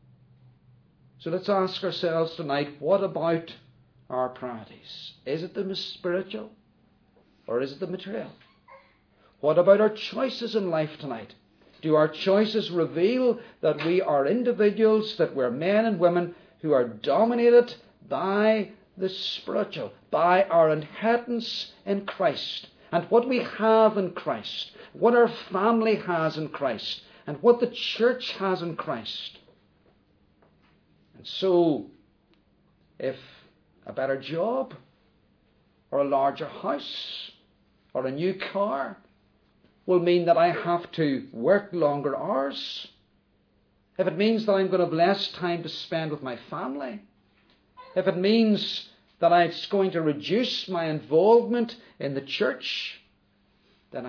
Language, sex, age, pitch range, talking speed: English, male, 50-69, 150-215 Hz, 130 wpm